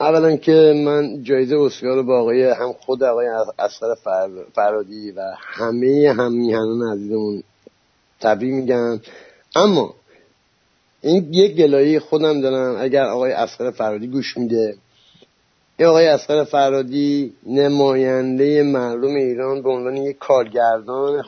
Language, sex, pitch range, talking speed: English, male, 125-180 Hz, 120 wpm